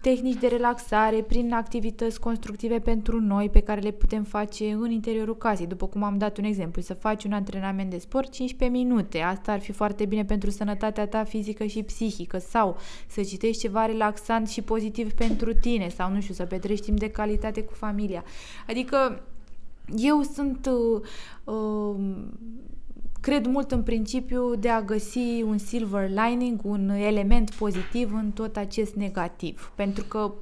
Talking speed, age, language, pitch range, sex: 165 wpm, 20-39, Romanian, 210-245 Hz, female